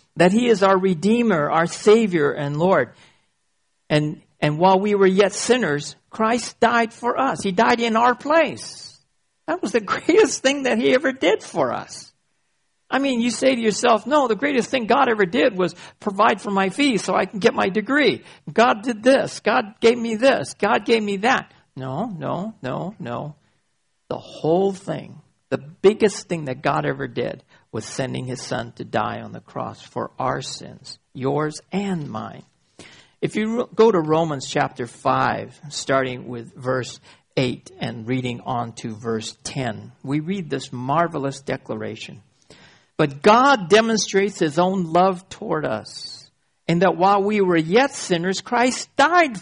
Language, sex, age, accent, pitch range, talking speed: English, male, 60-79, American, 145-230 Hz, 170 wpm